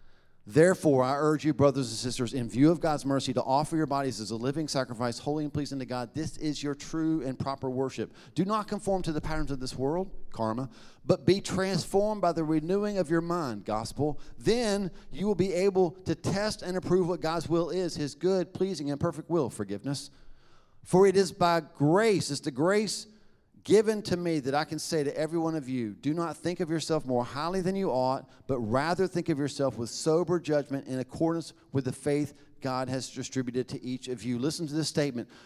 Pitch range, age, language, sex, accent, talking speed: 130-170 Hz, 40-59, English, male, American, 215 wpm